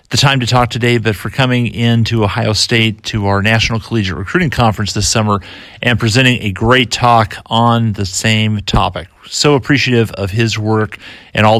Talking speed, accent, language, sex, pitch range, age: 180 wpm, American, English, male, 105-130 Hz, 40-59